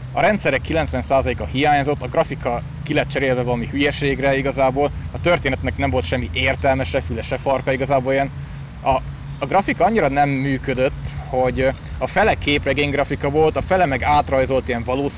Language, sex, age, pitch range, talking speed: Hungarian, male, 20-39, 125-145 Hz, 160 wpm